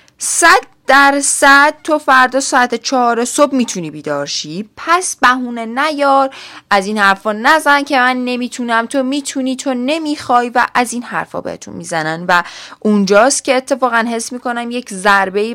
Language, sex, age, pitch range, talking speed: Persian, female, 10-29, 205-275 Hz, 145 wpm